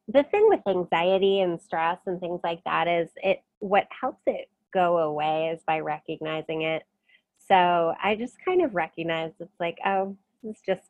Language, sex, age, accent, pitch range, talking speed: English, female, 20-39, American, 160-200 Hz, 180 wpm